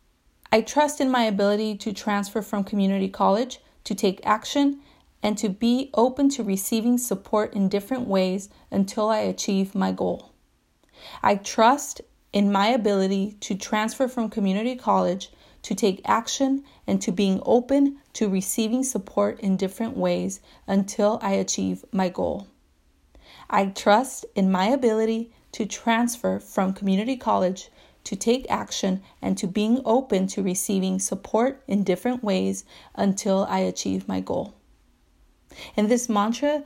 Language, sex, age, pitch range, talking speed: English, female, 30-49, 195-235 Hz, 140 wpm